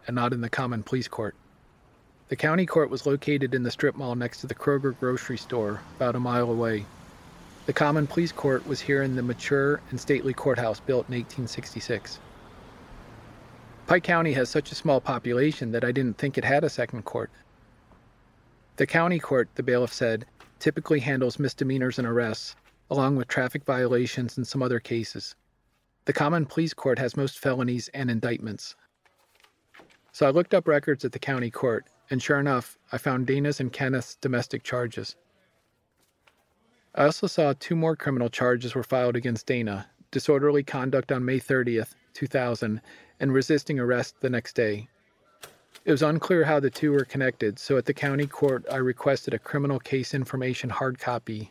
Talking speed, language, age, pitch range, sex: 170 wpm, English, 40-59, 120-145 Hz, male